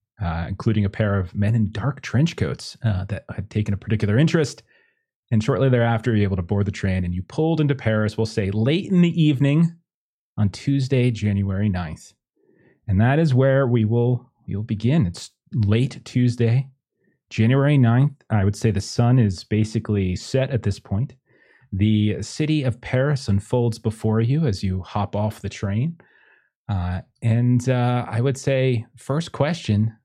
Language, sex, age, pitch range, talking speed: English, male, 30-49, 105-130 Hz, 175 wpm